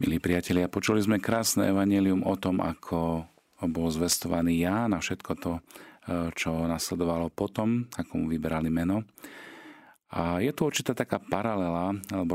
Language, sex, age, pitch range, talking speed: Slovak, male, 40-59, 85-100 Hz, 140 wpm